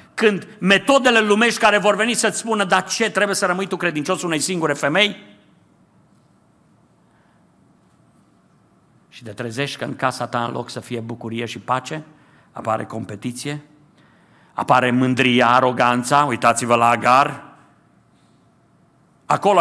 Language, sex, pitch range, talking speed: Romanian, male, 130-185 Hz, 125 wpm